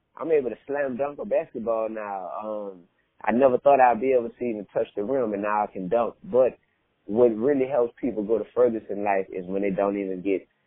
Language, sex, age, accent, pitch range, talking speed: English, male, 20-39, American, 95-125 Hz, 230 wpm